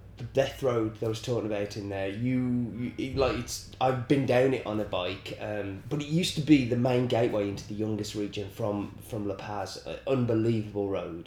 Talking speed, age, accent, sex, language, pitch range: 220 wpm, 30-49, British, male, English, 110-145 Hz